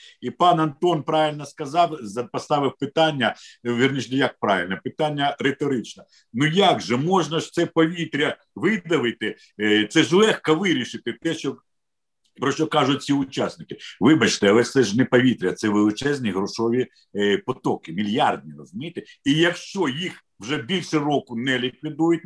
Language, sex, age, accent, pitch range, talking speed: Ukrainian, male, 50-69, native, 125-175 Hz, 140 wpm